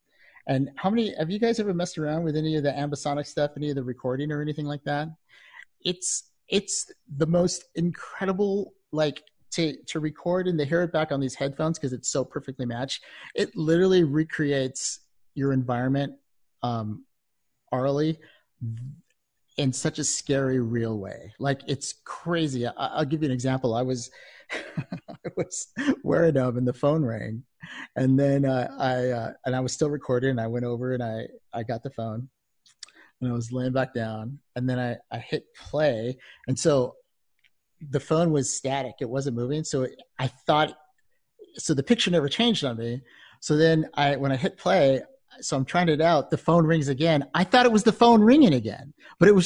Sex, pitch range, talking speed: male, 130-170 Hz, 185 wpm